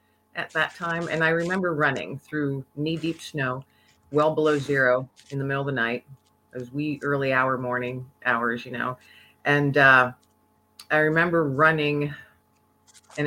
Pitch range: 125-150 Hz